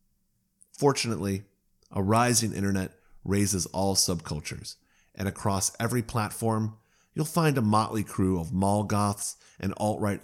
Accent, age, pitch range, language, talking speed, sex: American, 30-49, 95-115 Hz, English, 125 wpm, male